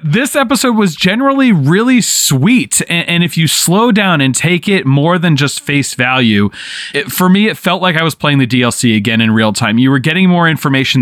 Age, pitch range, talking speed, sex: 30-49, 120-155 Hz, 210 wpm, male